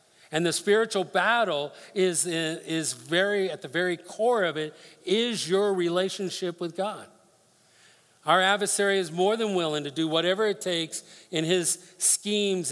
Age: 50-69